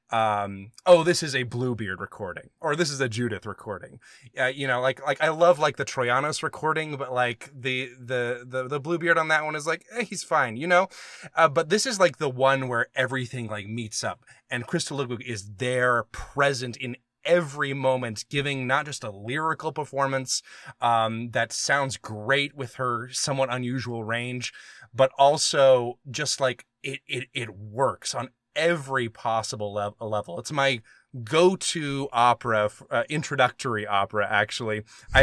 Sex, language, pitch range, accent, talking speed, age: male, English, 115-140 Hz, American, 170 wpm, 20-39